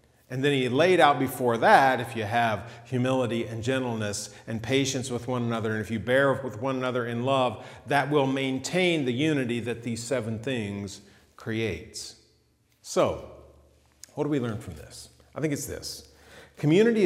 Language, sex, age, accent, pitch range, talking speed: English, male, 40-59, American, 115-165 Hz, 170 wpm